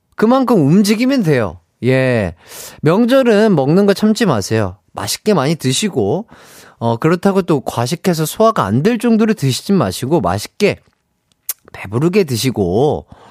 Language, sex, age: Korean, male, 30-49